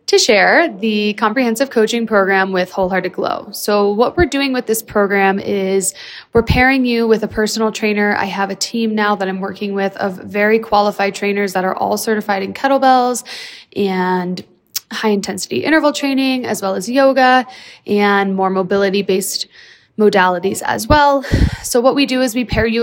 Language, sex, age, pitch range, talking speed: English, female, 20-39, 195-230 Hz, 170 wpm